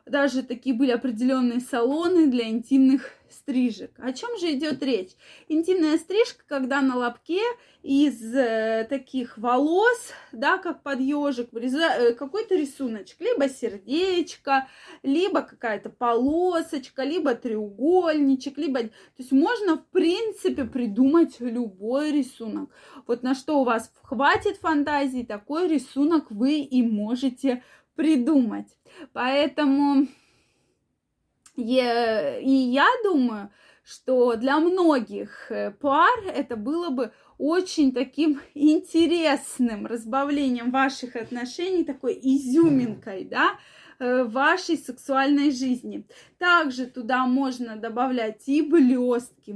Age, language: 20-39, Russian